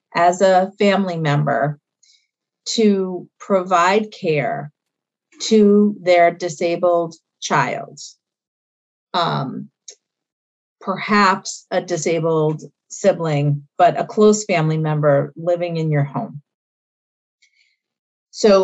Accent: American